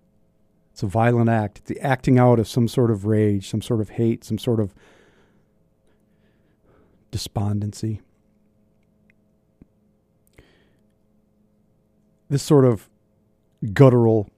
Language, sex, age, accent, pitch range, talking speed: English, male, 40-59, American, 105-120 Hz, 105 wpm